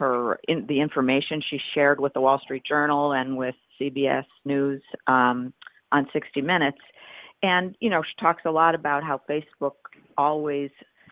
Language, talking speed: English, 160 wpm